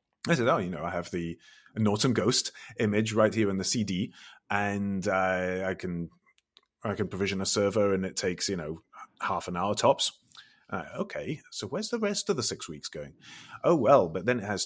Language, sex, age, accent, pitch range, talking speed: English, male, 30-49, British, 90-110 Hz, 210 wpm